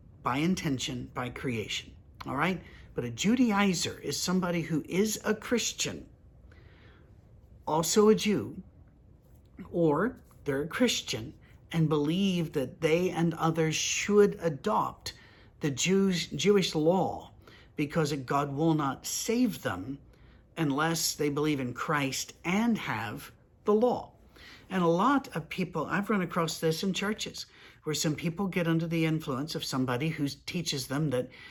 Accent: American